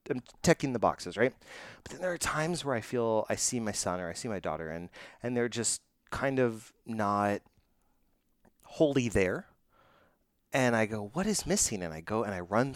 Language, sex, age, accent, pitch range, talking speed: English, male, 30-49, American, 95-120 Hz, 200 wpm